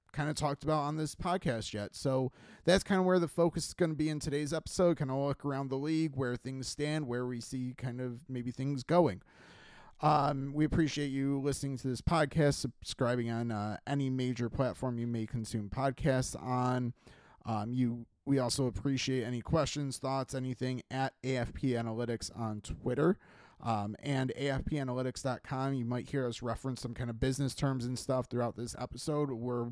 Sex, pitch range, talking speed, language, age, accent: male, 125-145 Hz, 185 wpm, English, 30-49, American